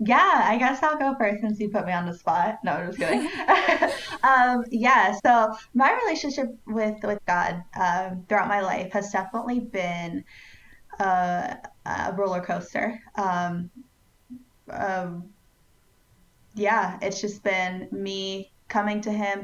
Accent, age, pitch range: American, 10-29, 180-225 Hz